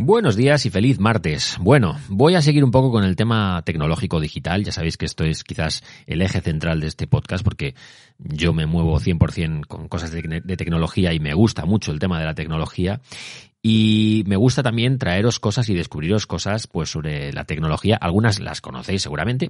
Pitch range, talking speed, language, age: 90-130 Hz, 195 wpm, Spanish, 30-49